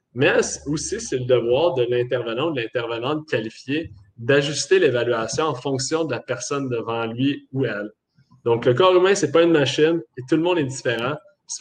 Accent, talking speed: Canadian, 190 wpm